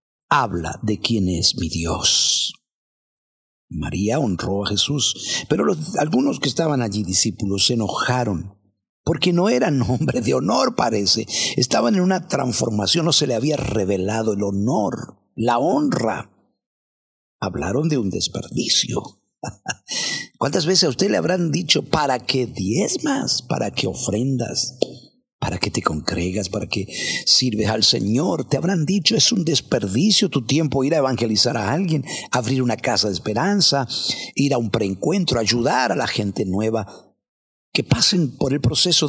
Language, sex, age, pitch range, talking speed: Spanish, male, 50-69, 105-145 Hz, 150 wpm